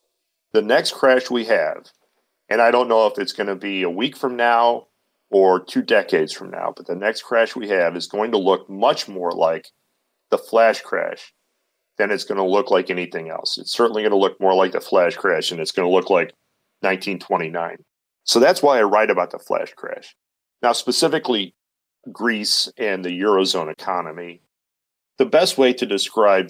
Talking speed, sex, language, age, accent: 190 wpm, male, English, 40-59, American